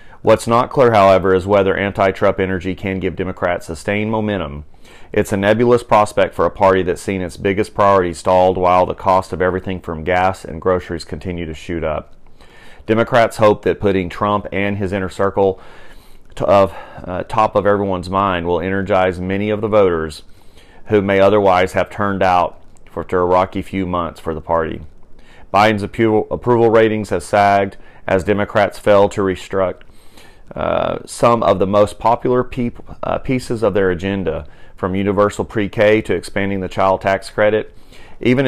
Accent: American